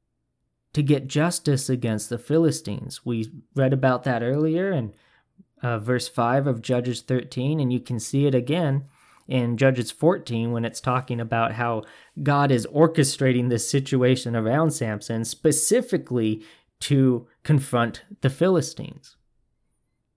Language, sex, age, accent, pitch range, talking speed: English, male, 20-39, American, 120-150 Hz, 130 wpm